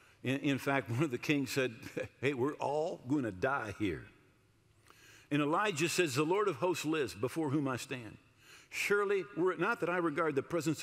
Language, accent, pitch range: English, American, 125-180 Hz